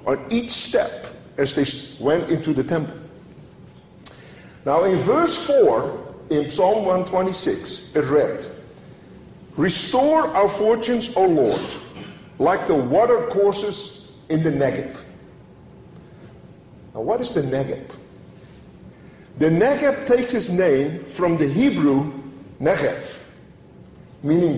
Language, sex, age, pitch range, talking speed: English, male, 50-69, 160-230 Hz, 110 wpm